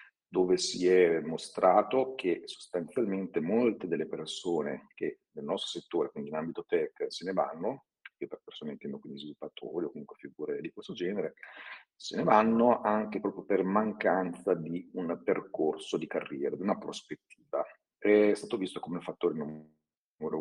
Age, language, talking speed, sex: 40-59, Italian, 160 wpm, male